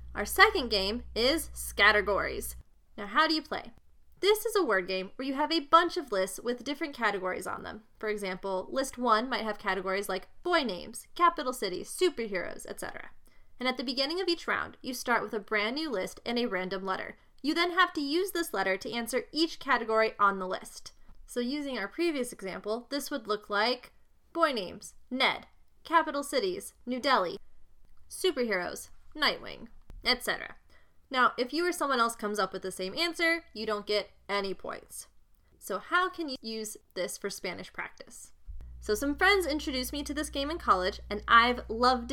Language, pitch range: English, 200-300 Hz